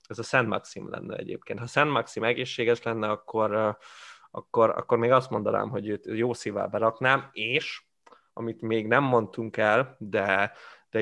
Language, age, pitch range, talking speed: Hungarian, 20-39, 105-120 Hz, 165 wpm